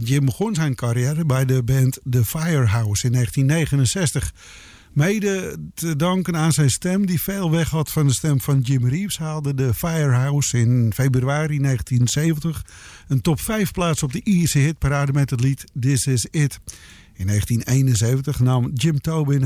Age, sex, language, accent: 50-69, male, English, Dutch